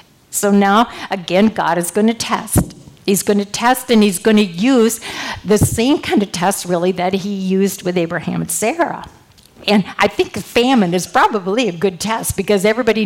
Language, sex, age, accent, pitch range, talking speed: English, female, 50-69, American, 180-215 Hz, 190 wpm